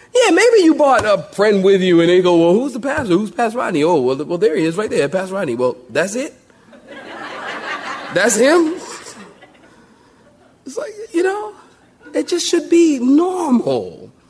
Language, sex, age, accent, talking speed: English, male, 40-59, American, 175 wpm